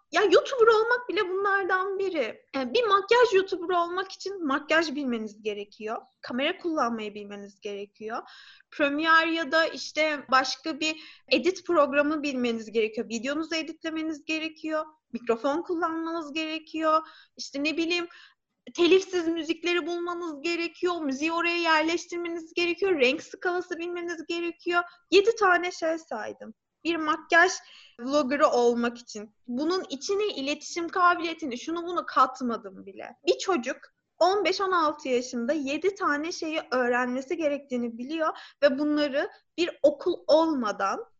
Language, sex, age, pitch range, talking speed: Turkish, female, 30-49, 270-345 Hz, 120 wpm